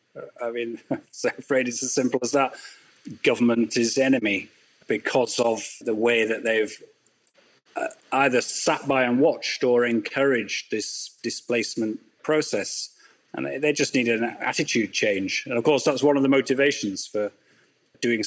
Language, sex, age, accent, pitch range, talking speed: English, male, 30-49, British, 110-135 Hz, 150 wpm